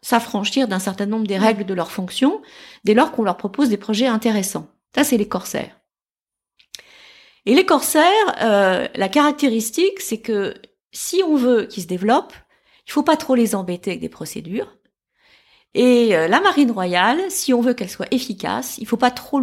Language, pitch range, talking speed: French, 200-265 Hz, 180 wpm